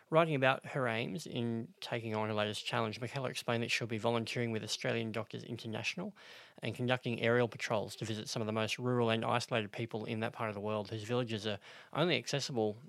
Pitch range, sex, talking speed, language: 110-125 Hz, male, 210 wpm, English